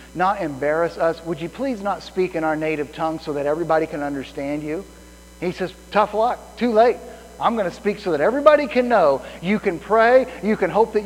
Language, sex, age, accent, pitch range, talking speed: English, male, 40-59, American, 120-175 Hz, 215 wpm